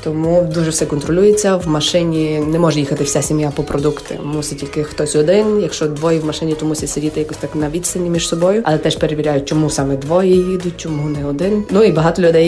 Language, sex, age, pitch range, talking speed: Ukrainian, female, 20-39, 155-190 Hz, 210 wpm